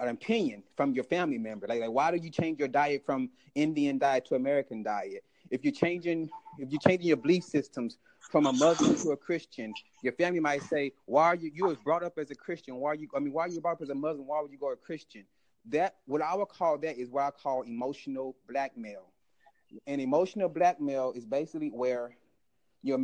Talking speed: 225 wpm